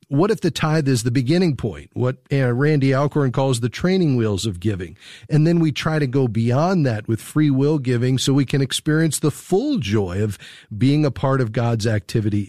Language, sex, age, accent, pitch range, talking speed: English, male, 40-59, American, 115-145 Hz, 205 wpm